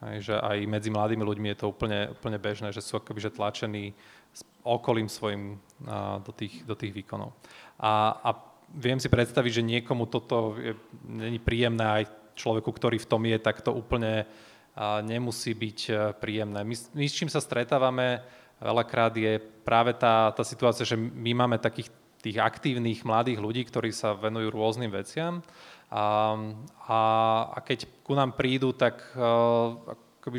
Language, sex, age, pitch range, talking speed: English, male, 20-39, 110-125 Hz, 155 wpm